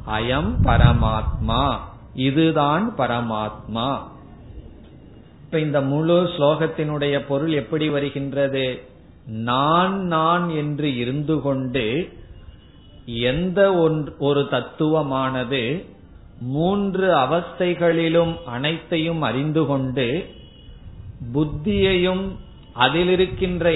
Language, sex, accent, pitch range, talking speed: Tamil, male, native, 120-165 Hz, 65 wpm